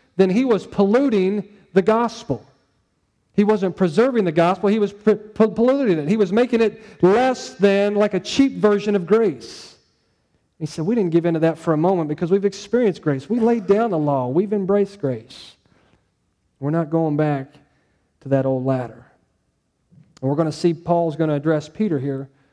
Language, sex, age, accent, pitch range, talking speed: English, male, 40-59, American, 140-195 Hz, 180 wpm